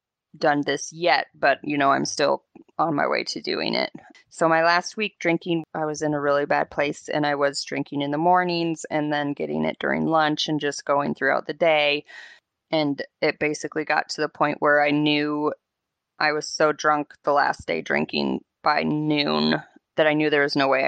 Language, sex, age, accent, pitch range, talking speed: English, female, 20-39, American, 145-165 Hz, 205 wpm